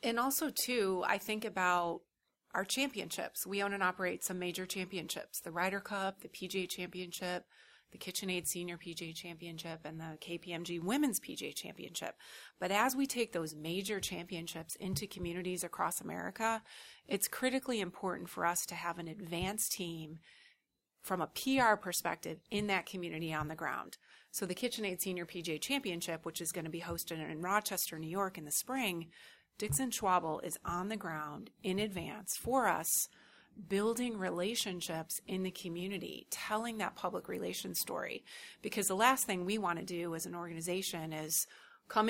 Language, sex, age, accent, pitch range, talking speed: English, female, 30-49, American, 170-210 Hz, 165 wpm